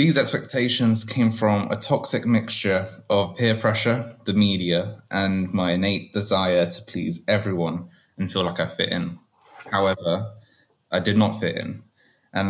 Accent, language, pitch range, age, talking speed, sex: British, English, 90-110 Hz, 20-39, 155 wpm, male